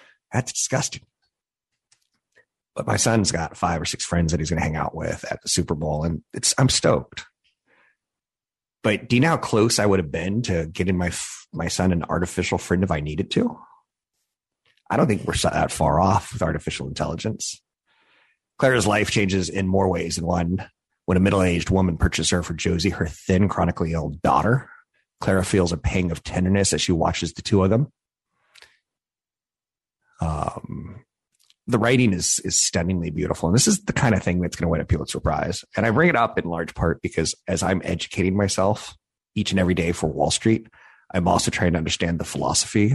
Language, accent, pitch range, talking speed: English, American, 85-100 Hz, 195 wpm